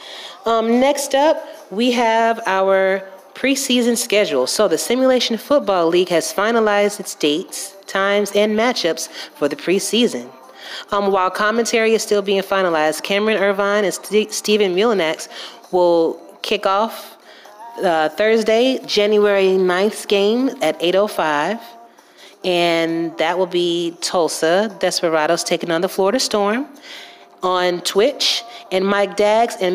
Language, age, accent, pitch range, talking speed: English, 30-49, American, 175-220 Hz, 125 wpm